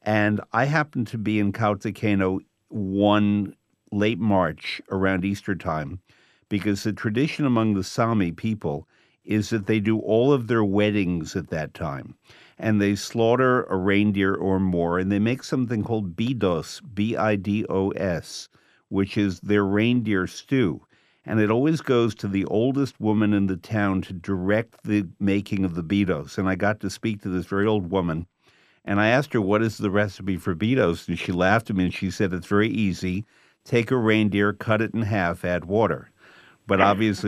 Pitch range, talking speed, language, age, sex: 95-110 Hz, 175 wpm, English, 50-69, male